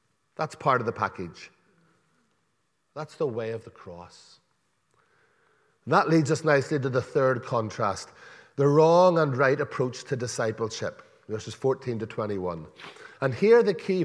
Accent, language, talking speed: Irish, English, 145 wpm